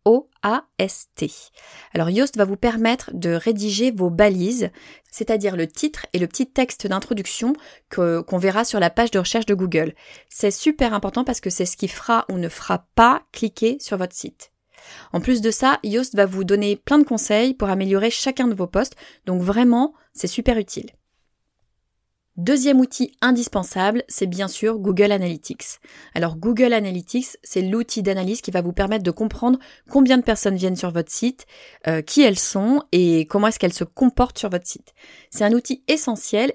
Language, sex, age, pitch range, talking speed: French, female, 20-39, 190-245 Hz, 180 wpm